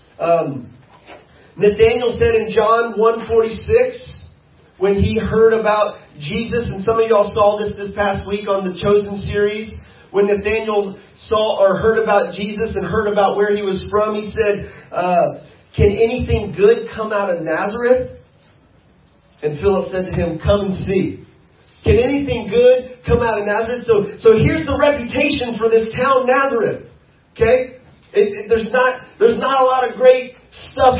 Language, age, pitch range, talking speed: English, 30-49, 205-270 Hz, 165 wpm